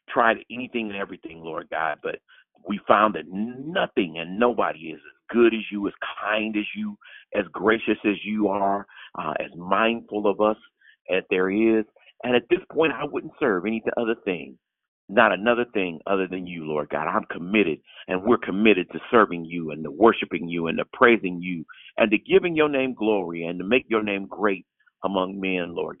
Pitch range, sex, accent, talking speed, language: 100-155 Hz, male, American, 195 wpm, English